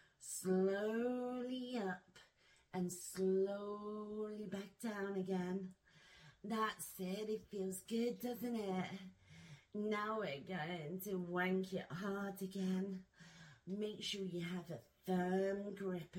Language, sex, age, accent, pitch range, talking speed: English, female, 40-59, British, 190-255 Hz, 110 wpm